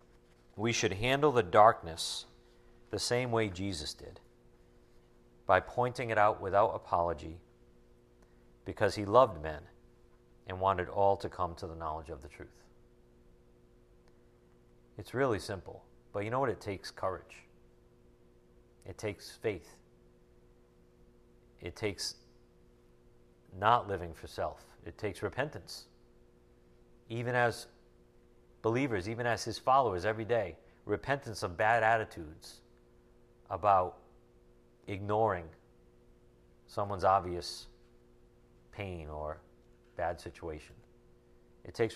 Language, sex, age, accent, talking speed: English, male, 50-69, American, 110 wpm